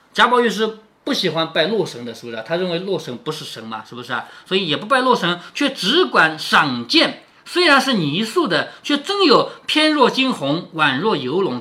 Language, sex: Chinese, male